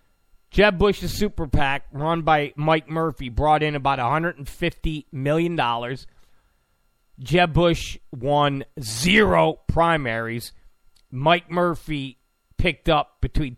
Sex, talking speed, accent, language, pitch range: male, 105 wpm, American, English, 125-170 Hz